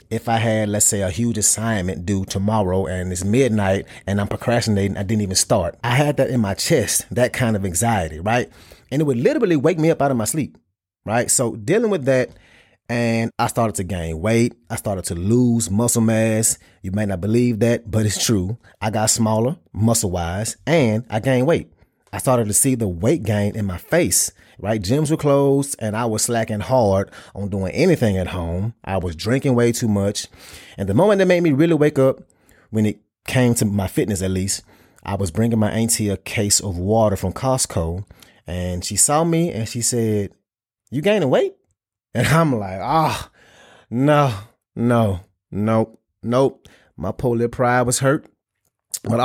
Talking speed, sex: 195 wpm, male